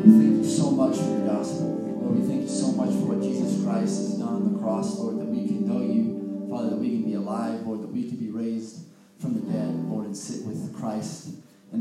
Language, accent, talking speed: English, American, 255 wpm